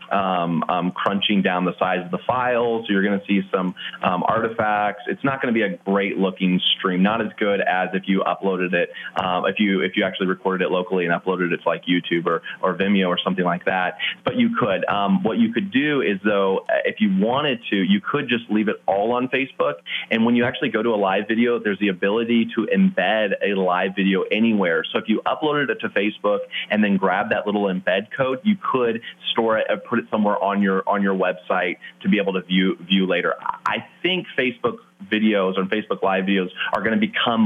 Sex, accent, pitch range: male, American, 95-115 Hz